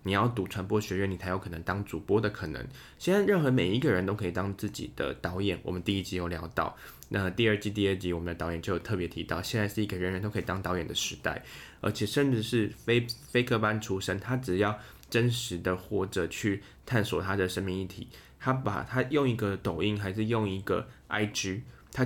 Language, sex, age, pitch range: Chinese, male, 10-29, 90-110 Hz